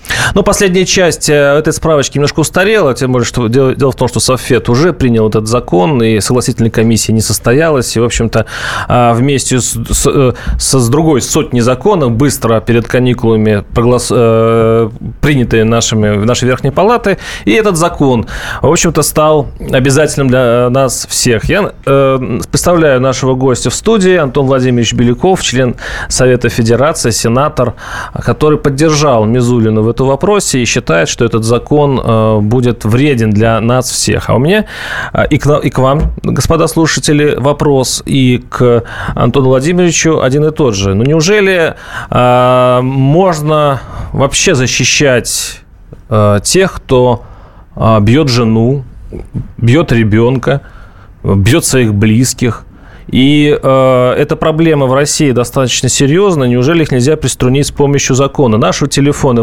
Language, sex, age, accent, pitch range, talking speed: Russian, male, 30-49, native, 120-150 Hz, 135 wpm